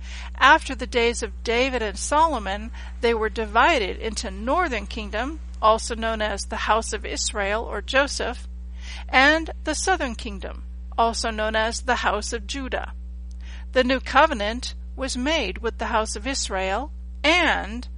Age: 50-69